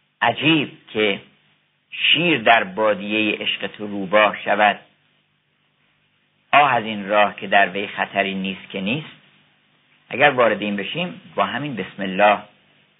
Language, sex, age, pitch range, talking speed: Persian, male, 50-69, 100-115 Hz, 130 wpm